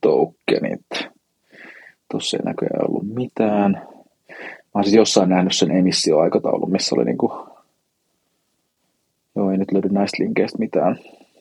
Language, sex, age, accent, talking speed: Finnish, male, 30-49, native, 120 wpm